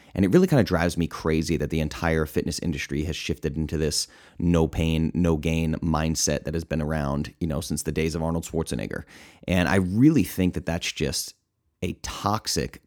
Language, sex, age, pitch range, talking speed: English, male, 30-49, 80-95 Hz, 200 wpm